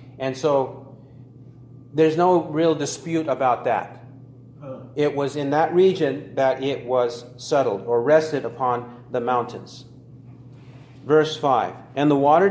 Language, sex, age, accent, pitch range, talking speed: English, male, 40-59, American, 130-160 Hz, 130 wpm